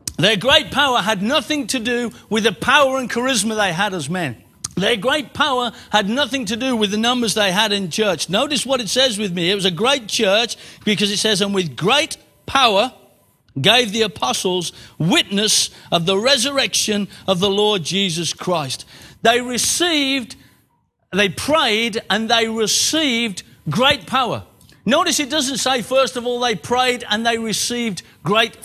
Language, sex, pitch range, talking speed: English, male, 185-265 Hz, 170 wpm